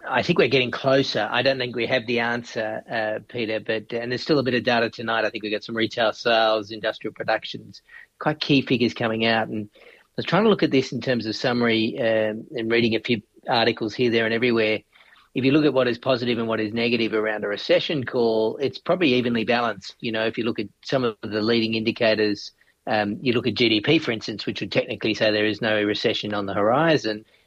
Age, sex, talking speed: 40-59, male, 230 wpm